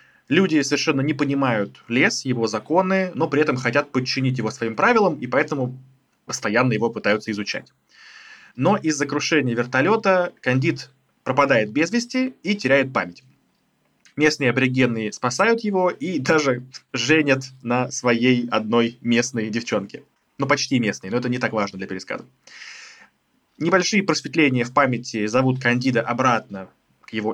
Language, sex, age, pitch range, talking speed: Russian, male, 20-39, 120-150 Hz, 135 wpm